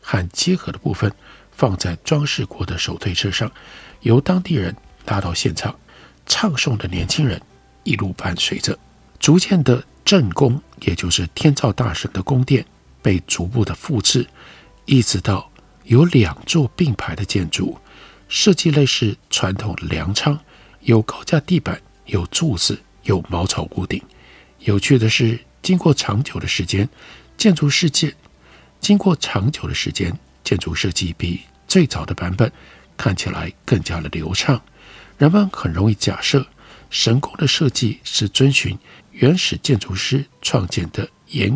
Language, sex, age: Chinese, male, 60-79